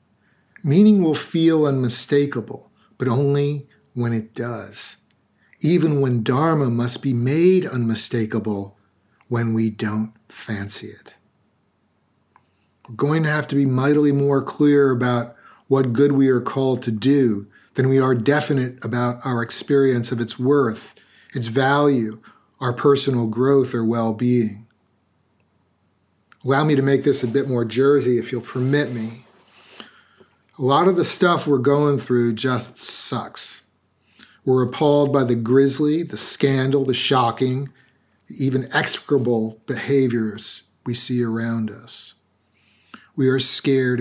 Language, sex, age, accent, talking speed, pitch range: English, male, 40-59, American, 130 wpm, 115-140 Hz